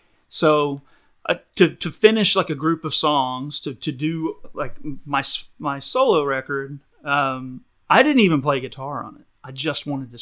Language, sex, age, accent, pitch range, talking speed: English, male, 30-49, American, 135-165 Hz, 175 wpm